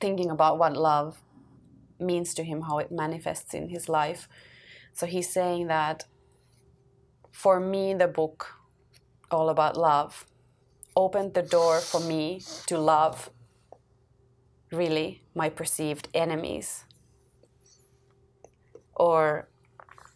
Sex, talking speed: female, 105 wpm